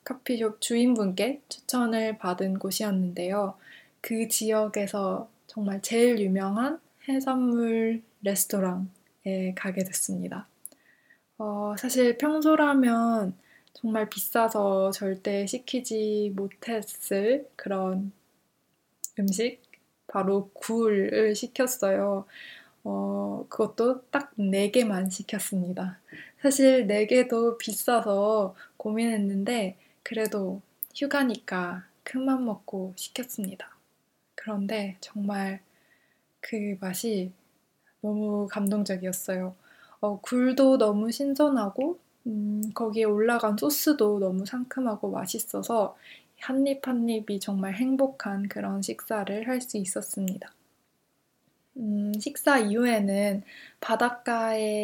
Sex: female